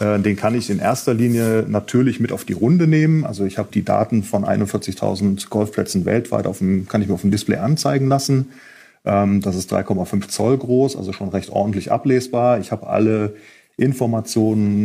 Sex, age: male, 30-49